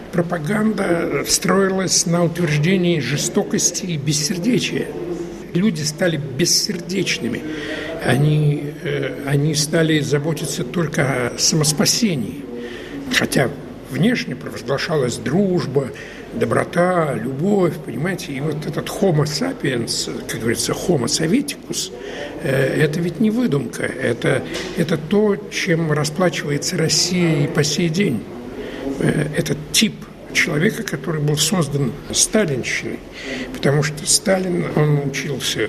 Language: Russian